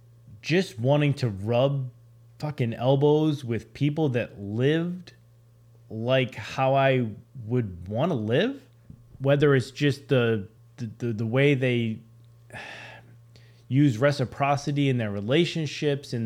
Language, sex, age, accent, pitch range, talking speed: English, male, 30-49, American, 110-130 Hz, 120 wpm